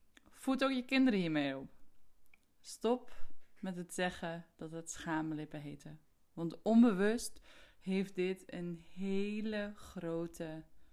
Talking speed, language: 115 wpm, Dutch